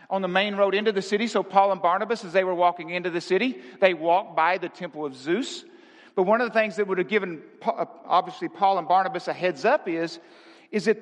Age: 50-69